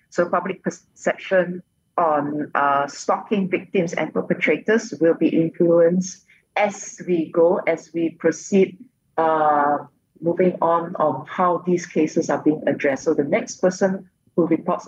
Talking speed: 135 wpm